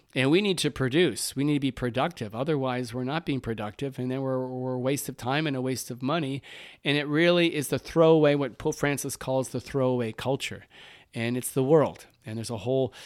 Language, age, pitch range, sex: English, 40-59, 125-150 Hz, male